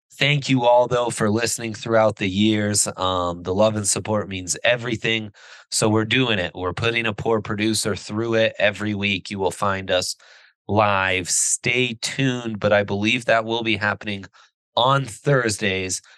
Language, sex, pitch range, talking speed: English, male, 100-115 Hz, 165 wpm